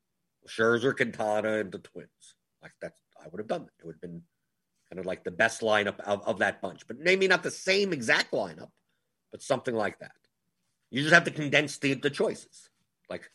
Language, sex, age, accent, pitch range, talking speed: English, male, 50-69, American, 115-155 Hz, 210 wpm